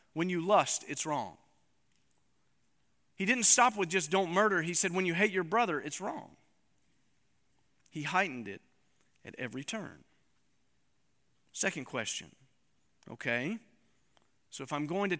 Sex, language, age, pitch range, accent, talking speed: male, English, 40-59, 135-190 Hz, American, 140 wpm